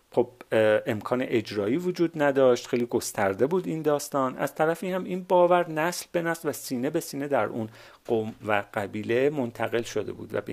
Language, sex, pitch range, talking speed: Persian, male, 110-160 Hz, 190 wpm